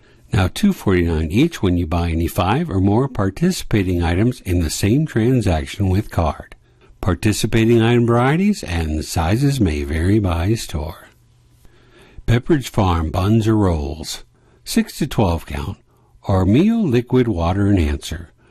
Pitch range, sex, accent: 85-125 Hz, male, American